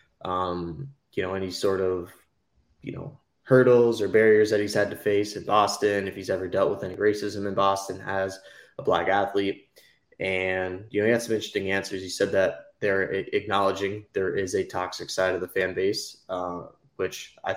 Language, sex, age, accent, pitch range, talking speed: English, male, 20-39, American, 95-110 Hz, 190 wpm